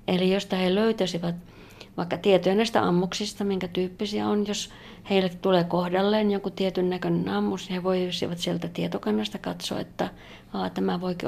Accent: native